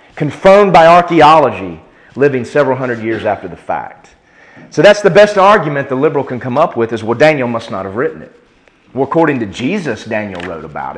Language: English